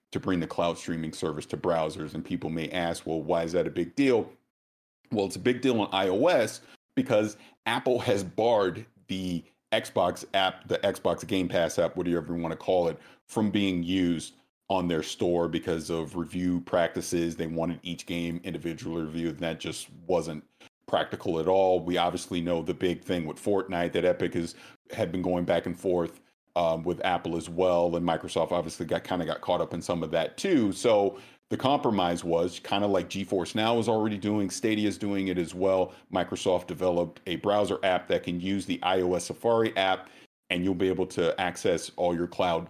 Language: English